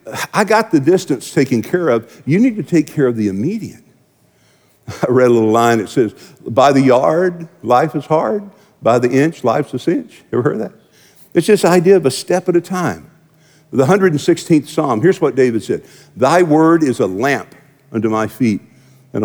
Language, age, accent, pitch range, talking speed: English, 50-69, American, 130-190 Hz, 195 wpm